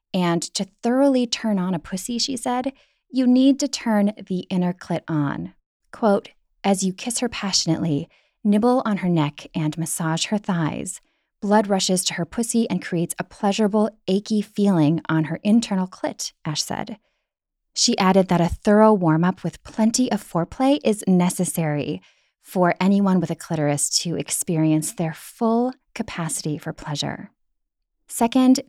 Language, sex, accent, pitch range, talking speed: English, female, American, 170-235 Hz, 155 wpm